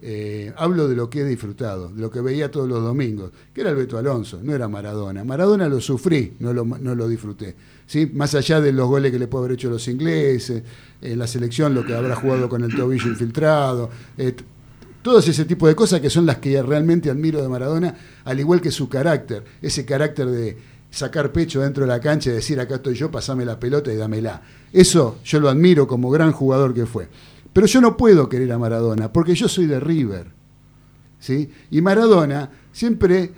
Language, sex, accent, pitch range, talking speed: Spanish, male, Argentinian, 125-165 Hz, 210 wpm